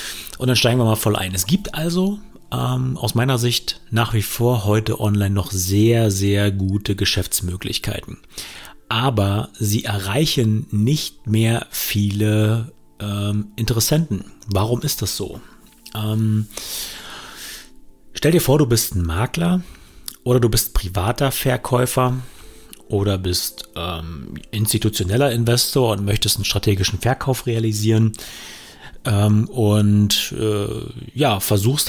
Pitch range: 105-120 Hz